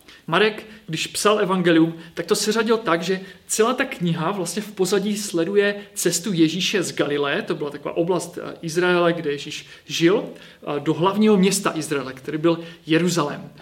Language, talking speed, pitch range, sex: Czech, 160 wpm, 165-205 Hz, male